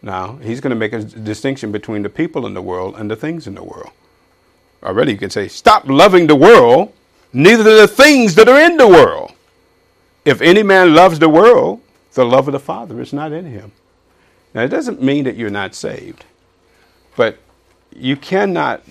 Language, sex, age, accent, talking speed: English, male, 50-69, American, 195 wpm